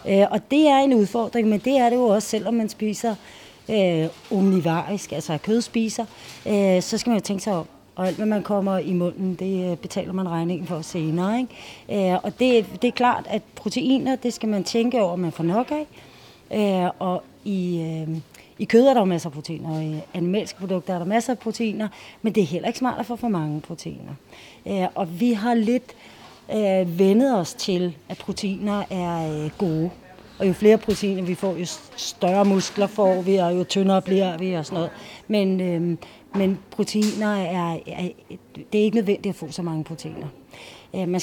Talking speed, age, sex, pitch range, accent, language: 195 wpm, 30-49, female, 180-215 Hz, native, Danish